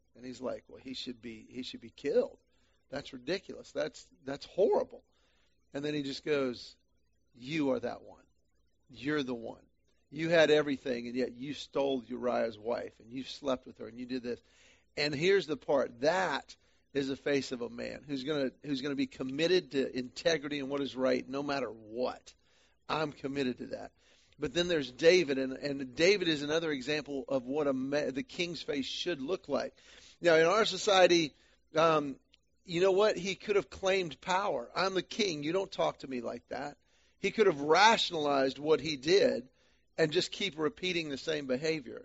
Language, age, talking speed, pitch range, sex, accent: English, 40-59, 195 wpm, 130-170 Hz, male, American